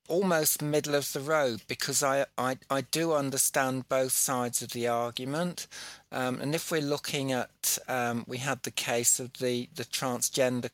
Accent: British